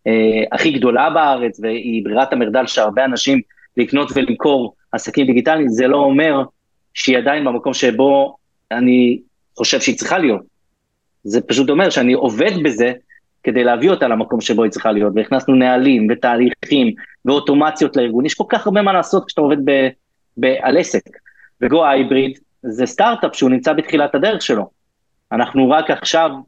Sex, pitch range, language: male, 125-165 Hz, Hebrew